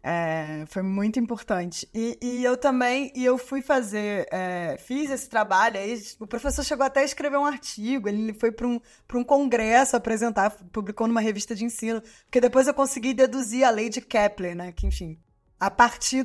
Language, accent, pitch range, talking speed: Portuguese, Brazilian, 205-255 Hz, 190 wpm